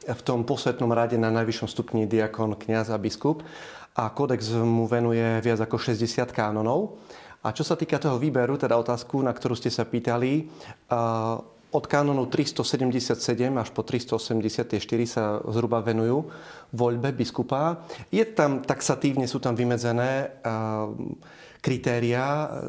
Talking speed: 130 wpm